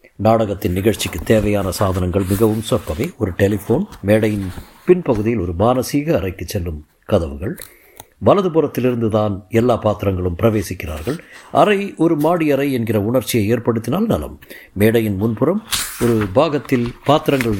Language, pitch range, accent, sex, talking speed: Tamil, 105-145 Hz, native, male, 115 wpm